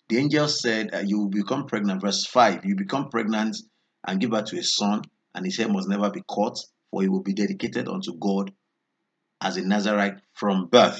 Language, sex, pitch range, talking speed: English, male, 100-135 Hz, 205 wpm